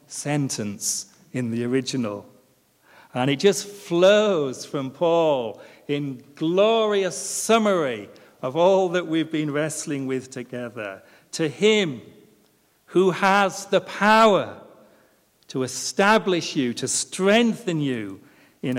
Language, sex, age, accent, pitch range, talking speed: English, male, 40-59, British, 130-190 Hz, 110 wpm